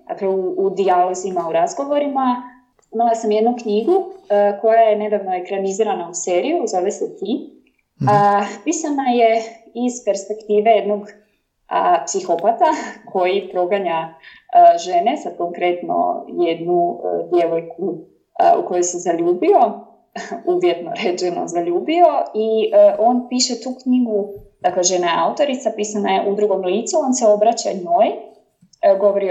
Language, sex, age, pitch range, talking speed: Croatian, female, 20-39, 190-315 Hz, 135 wpm